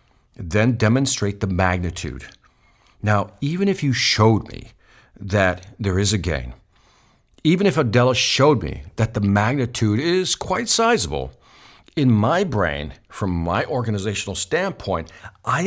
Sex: male